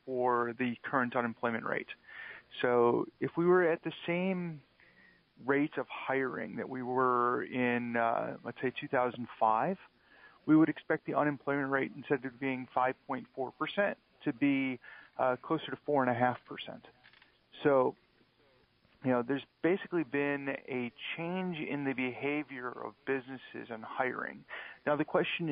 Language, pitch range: English, 120-140 Hz